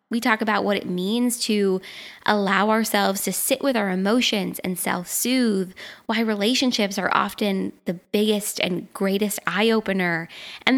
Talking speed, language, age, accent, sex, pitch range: 145 wpm, English, 10-29, American, female, 200-245 Hz